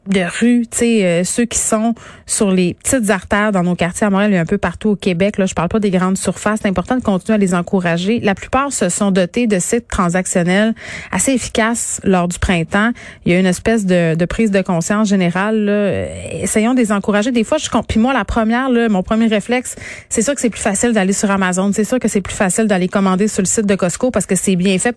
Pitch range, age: 185-220 Hz, 30-49